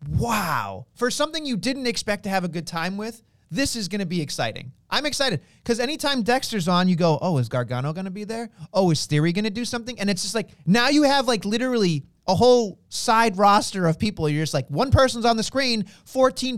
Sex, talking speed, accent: male, 230 wpm, American